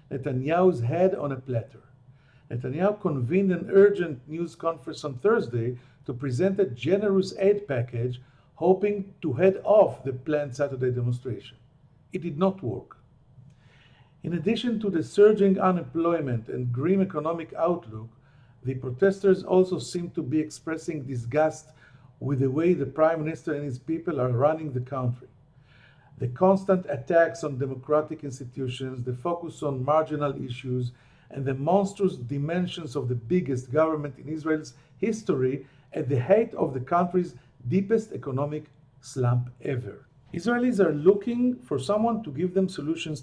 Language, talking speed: English, 145 wpm